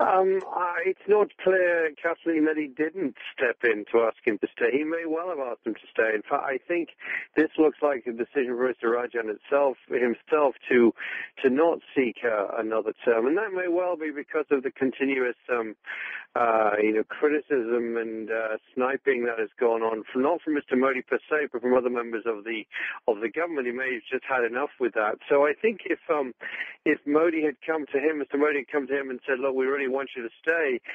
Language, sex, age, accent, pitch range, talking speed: English, male, 50-69, British, 125-155 Hz, 225 wpm